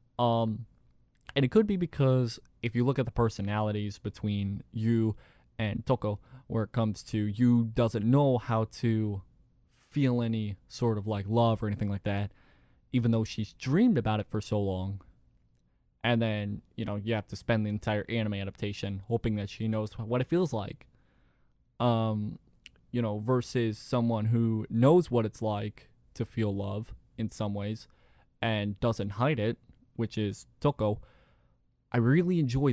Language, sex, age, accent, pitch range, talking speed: English, male, 20-39, American, 105-125 Hz, 165 wpm